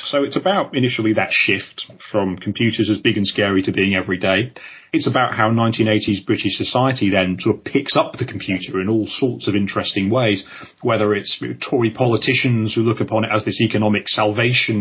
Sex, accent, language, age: male, British, English, 30-49